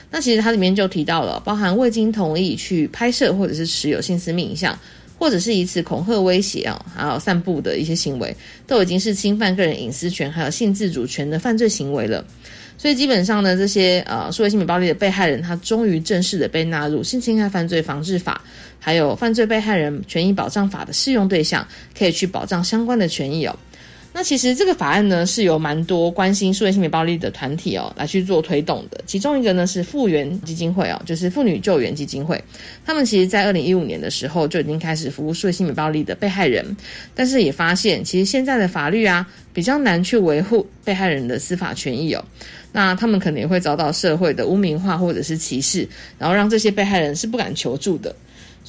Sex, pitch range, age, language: female, 165-210 Hz, 20-39, Chinese